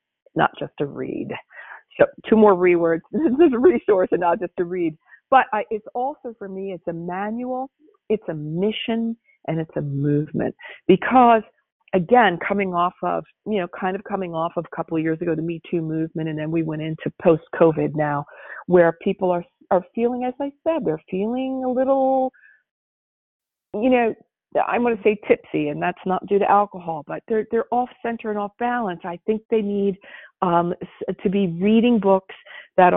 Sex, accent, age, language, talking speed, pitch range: female, American, 50-69, English, 190 wpm, 170-225 Hz